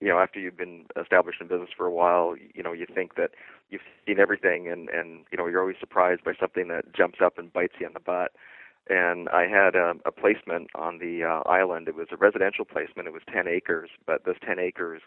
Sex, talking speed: male, 240 wpm